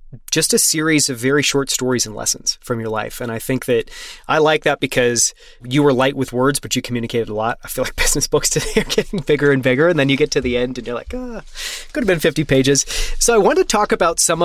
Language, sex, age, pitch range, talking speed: English, male, 30-49, 125-155 Hz, 265 wpm